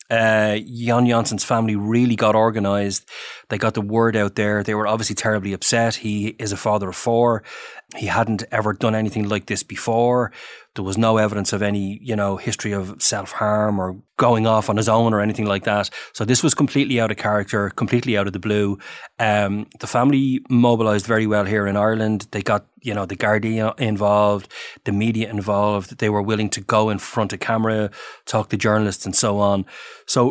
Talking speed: 200 wpm